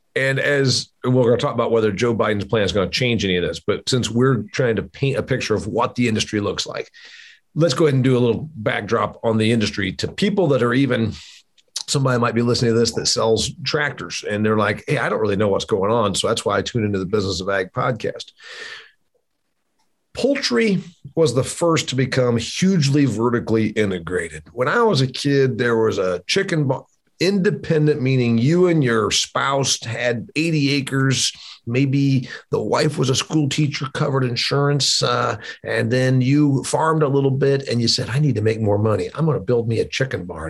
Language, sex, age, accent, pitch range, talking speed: English, male, 50-69, American, 115-150 Hz, 210 wpm